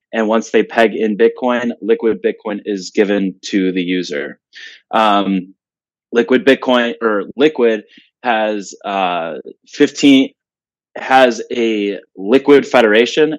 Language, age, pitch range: English, 20-39, 105-125 Hz